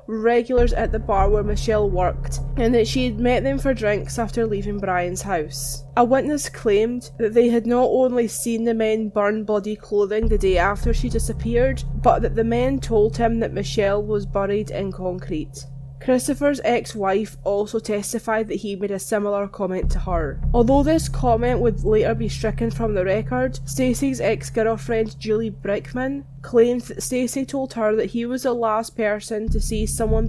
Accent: British